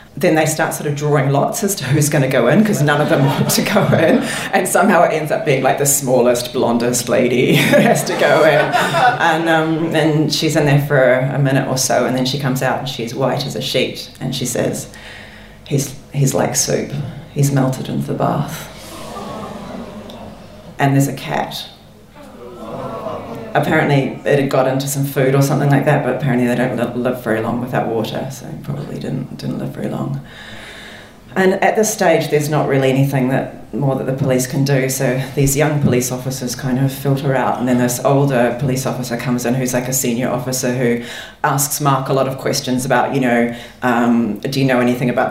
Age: 30-49